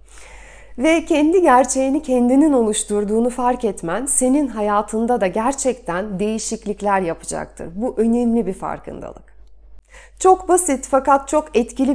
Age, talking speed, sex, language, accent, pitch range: 40-59, 110 wpm, female, Turkish, native, 210-290 Hz